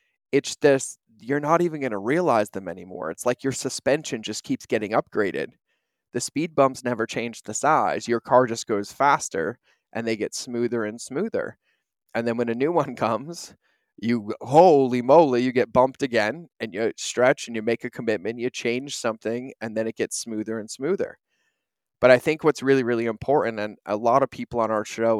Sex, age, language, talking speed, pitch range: male, 20-39, English, 200 wpm, 105-130 Hz